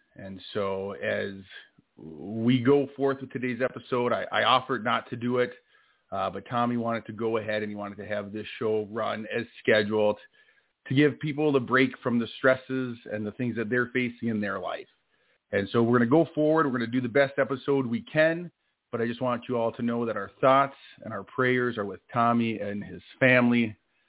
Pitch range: 115-140 Hz